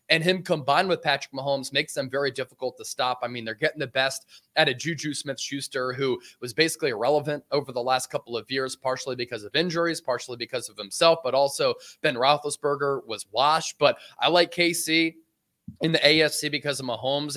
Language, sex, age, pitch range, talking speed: English, male, 20-39, 135-180 Hz, 195 wpm